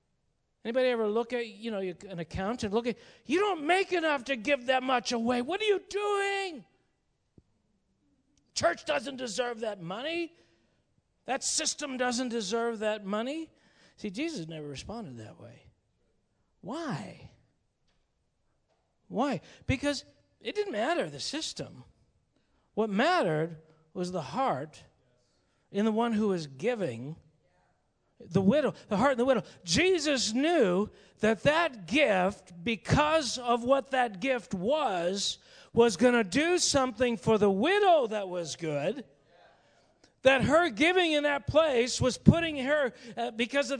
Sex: male